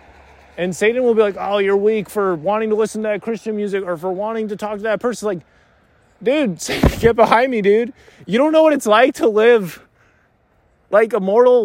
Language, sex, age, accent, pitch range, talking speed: English, male, 20-39, American, 120-200 Hz, 210 wpm